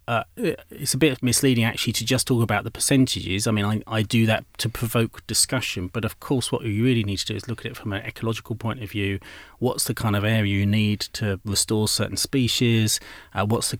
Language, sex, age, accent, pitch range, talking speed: English, male, 30-49, British, 105-125 Hz, 235 wpm